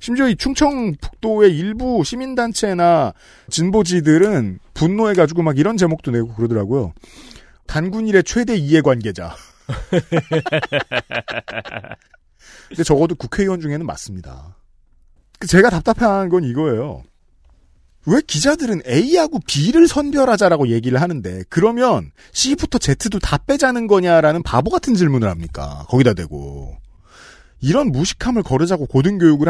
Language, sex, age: Korean, male, 40-59